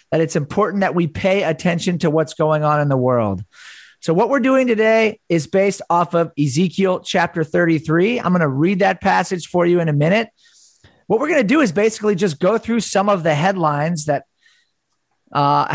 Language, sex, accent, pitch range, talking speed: English, male, American, 155-205 Hz, 200 wpm